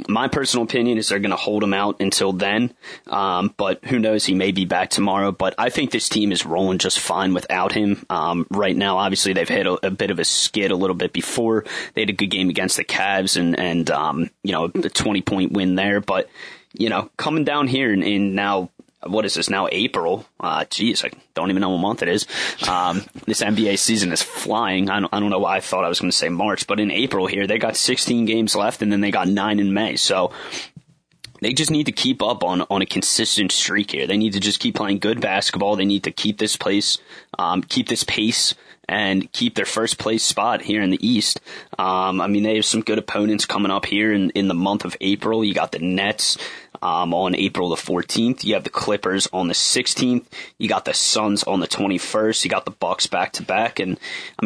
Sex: male